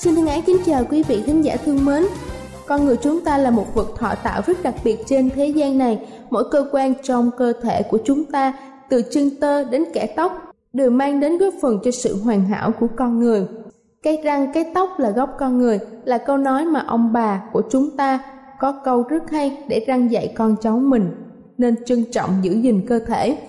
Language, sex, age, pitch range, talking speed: Vietnamese, female, 20-39, 230-275 Hz, 225 wpm